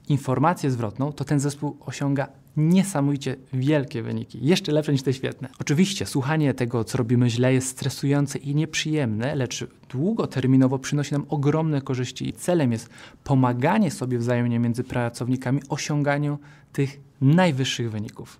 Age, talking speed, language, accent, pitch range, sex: 20-39, 135 wpm, Polish, native, 125-155 Hz, male